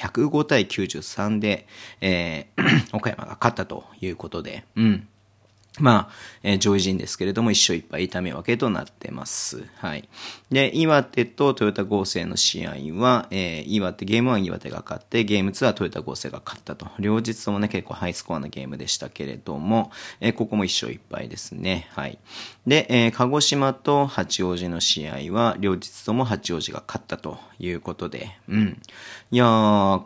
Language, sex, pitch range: Japanese, male, 90-115 Hz